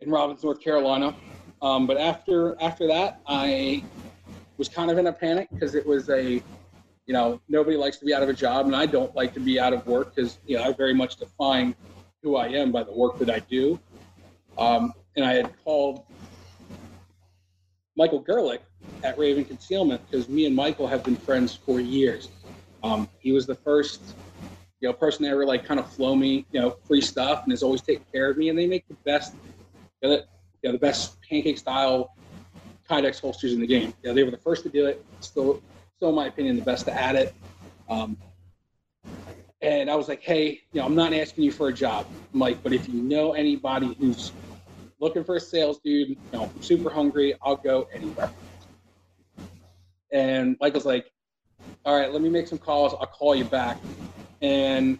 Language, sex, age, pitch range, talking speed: English, male, 40-59, 100-145 Hz, 205 wpm